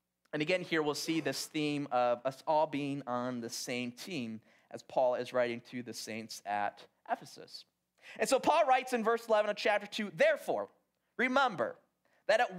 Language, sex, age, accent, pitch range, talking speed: English, male, 30-49, American, 160-245 Hz, 180 wpm